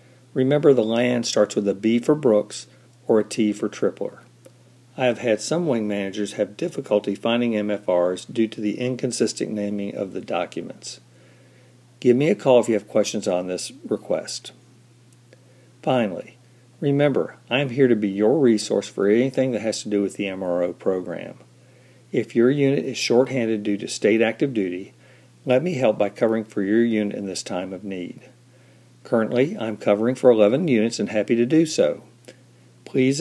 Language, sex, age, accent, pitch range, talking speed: English, male, 50-69, American, 105-125 Hz, 175 wpm